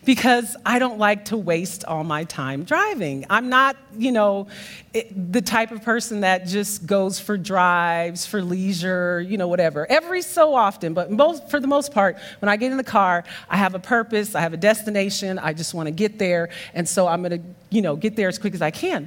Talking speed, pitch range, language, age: 225 wpm, 185-260 Hz, English, 40-59